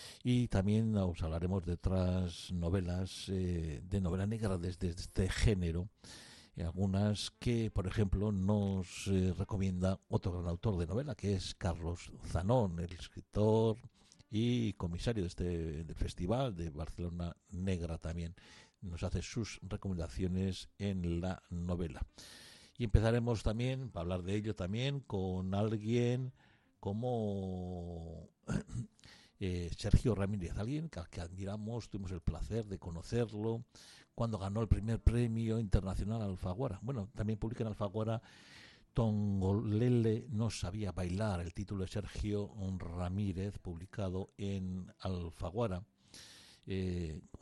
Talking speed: 125 wpm